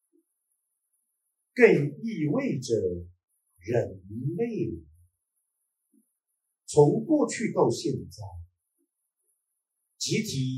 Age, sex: 50-69, male